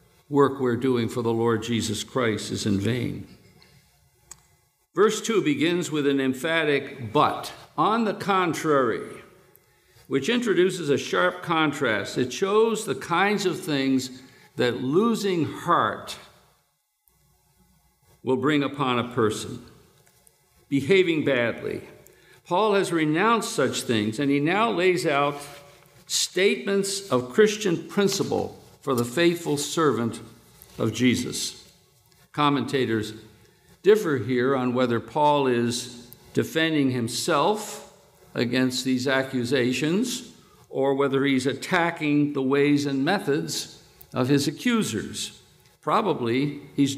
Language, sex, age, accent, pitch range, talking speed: English, male, 60-79, American, 130-185 Hz, 110 wpm